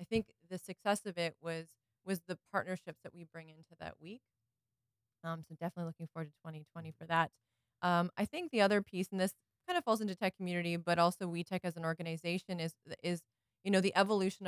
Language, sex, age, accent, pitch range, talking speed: English, female, 20-39, American, 165-185 Hz, 220 wpm